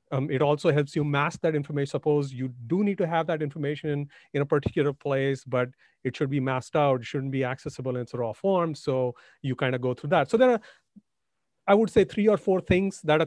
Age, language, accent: 40-59, English, Indian